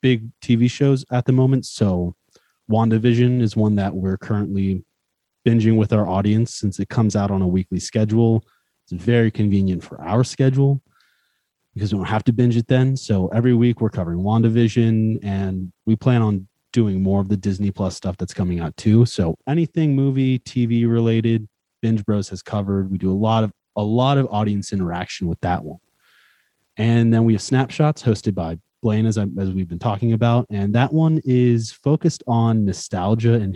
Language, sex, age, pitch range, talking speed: English, male, 30-49, 100-125 Hz, 185 wpm